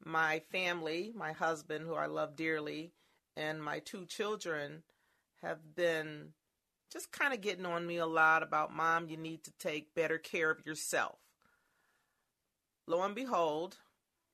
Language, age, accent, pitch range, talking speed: English, 40-59, American, 165-210 Hz, 145 wpm